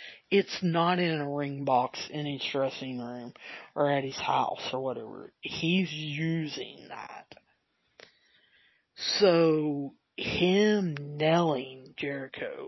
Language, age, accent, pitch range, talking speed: English, 40-59, American, 145-190 Hz, 110 wpm